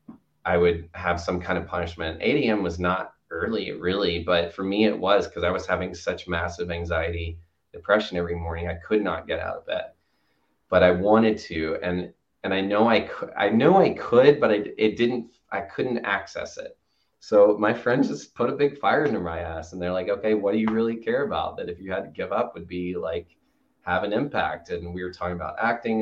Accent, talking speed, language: American, 220 wpm, English